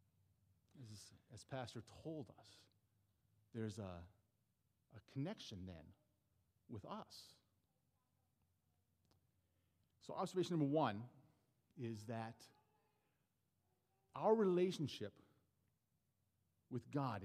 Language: English